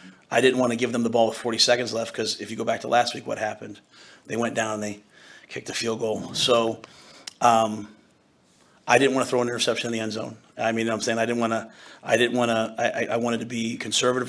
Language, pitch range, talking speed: English, 115-125 Hz, 275 wpm